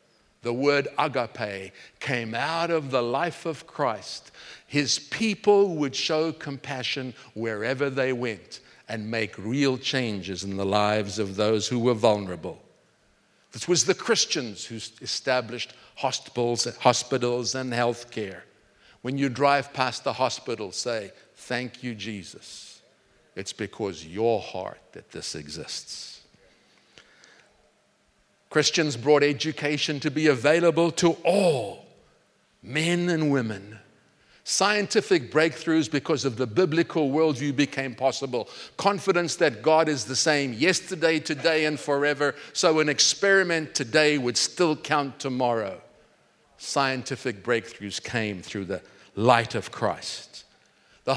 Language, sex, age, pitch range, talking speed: English, male, 50-69, 115-155 Hz, 120 wpm